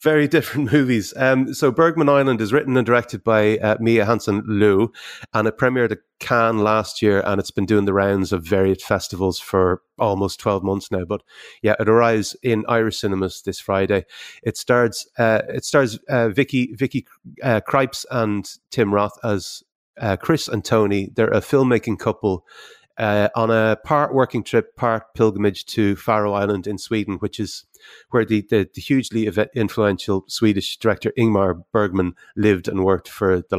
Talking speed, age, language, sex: 175 wpm, 30-49, English, male